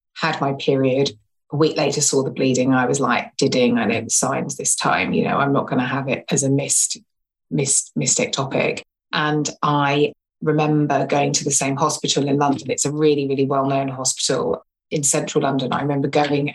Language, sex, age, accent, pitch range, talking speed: English, female, 30-49, British, 135-150 Hz, 205 wpm